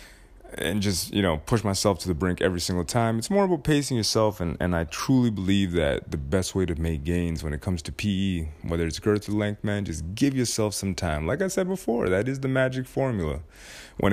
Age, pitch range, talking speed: 30-49, 85-110 Hz, 235 wpm